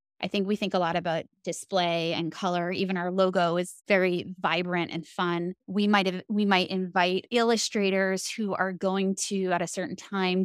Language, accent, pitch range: English, American, 175-200 Hz